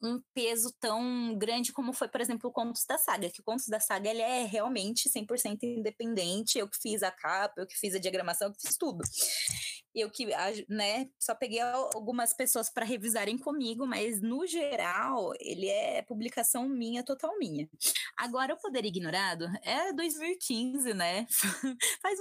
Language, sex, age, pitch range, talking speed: Portuguese, female, 10-29, 215-275 Hz, 170 wpm